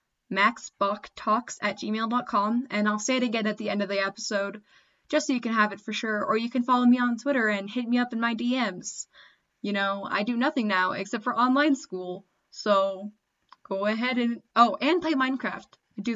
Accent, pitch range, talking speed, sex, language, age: American, 205-255 Hz, 210 wpm, female, English, 10-29